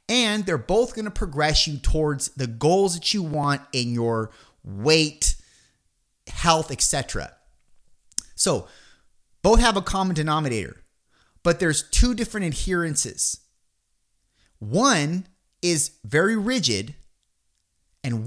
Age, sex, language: 30-49, male, English